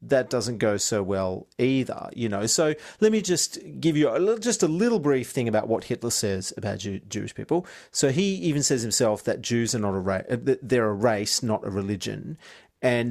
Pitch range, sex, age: 100-125 Hz, male, 40-59